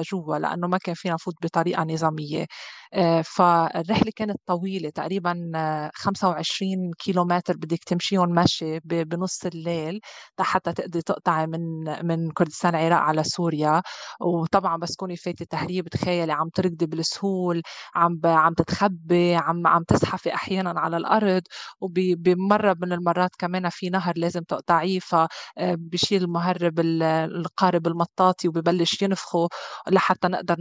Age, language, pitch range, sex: 20-39, Arabic, 165-185 Hz, female